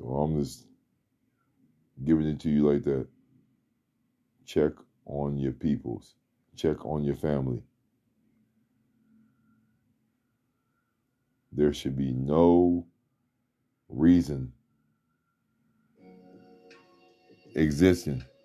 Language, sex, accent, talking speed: English, male, American, 70 wpm